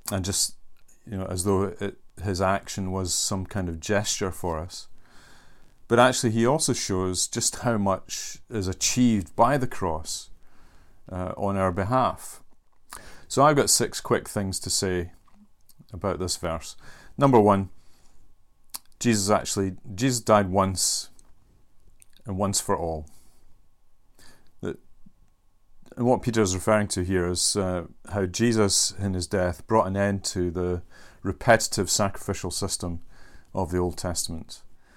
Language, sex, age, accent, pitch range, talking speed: English, male, 40-59, British, 90-105 Hz, 140 wpm